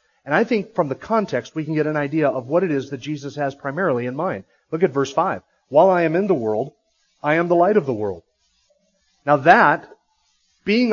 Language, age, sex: English, 40-59, male